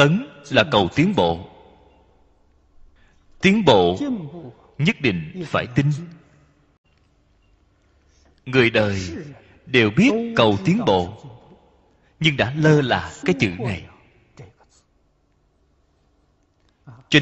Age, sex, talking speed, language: 30-49, male, 90 wpm, Vietnamese